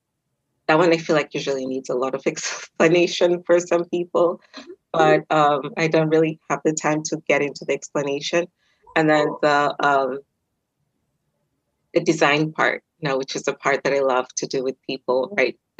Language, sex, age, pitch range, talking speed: English, female, 20-39, 130-160 Hz, 180 wpm